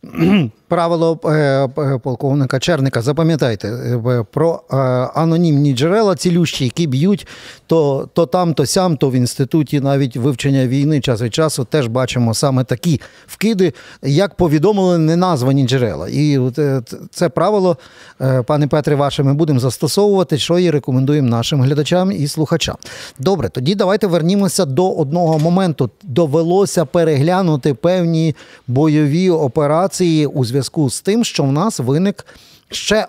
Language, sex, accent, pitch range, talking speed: Ukrainian, male, native, 135-170 Hz, 125 wpm